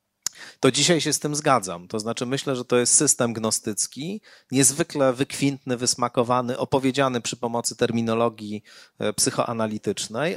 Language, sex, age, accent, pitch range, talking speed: Polish, male, 40-59, native, 110-135 Hz, 125 wpm